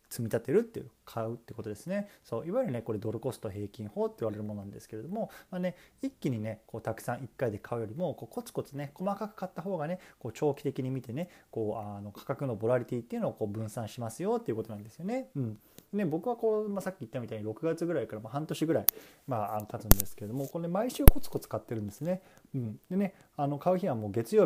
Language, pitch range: Japanese, 110-175 Hz